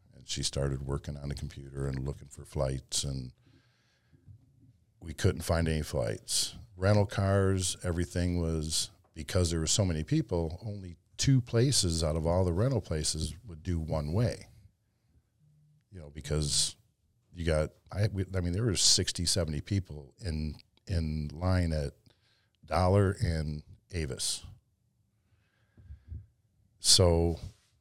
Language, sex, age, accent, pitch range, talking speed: English, male, 50-69, American, 80-105 Hz, 130 wpm